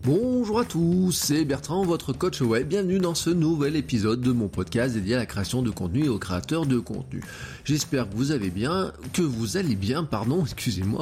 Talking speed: 210 wpm